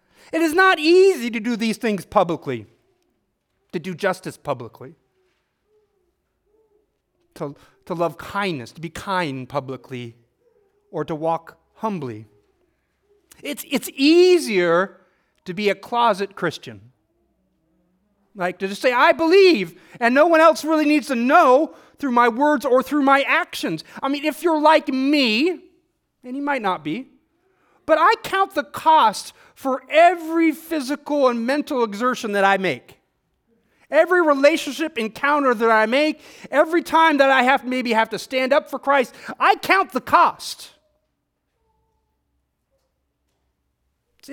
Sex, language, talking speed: male, English, 140 wpm